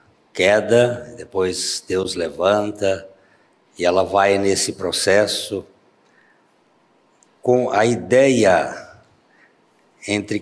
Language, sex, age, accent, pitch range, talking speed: Portuguese, male, 60-79, Brazilian, 95-115 Hz, 75 wpm